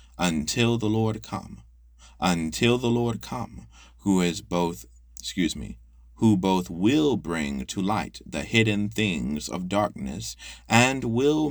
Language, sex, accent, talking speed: English, male, American, 135 wpm